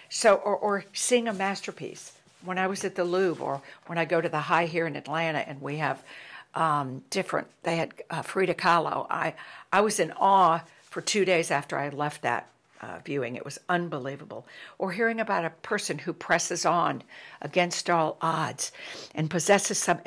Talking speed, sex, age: 190 wpm, female, 60-79